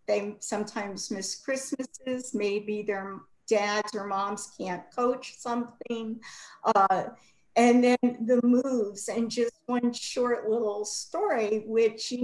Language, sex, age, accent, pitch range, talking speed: English, female, 50-69, American, 210-245 Hz, 125 wpm